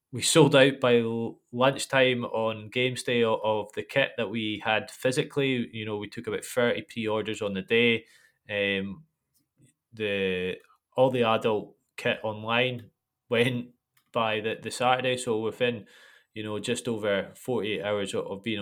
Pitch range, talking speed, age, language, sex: 100-125 Hz, 155 wpm, 20-39, English, male